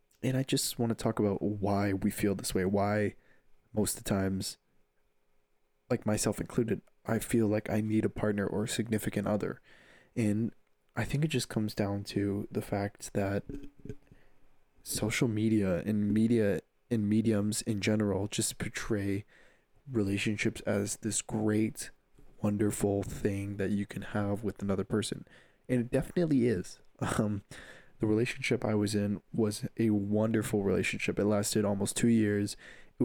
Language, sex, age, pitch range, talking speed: English, male, 20-39, 100-110 Hz, 155 wpm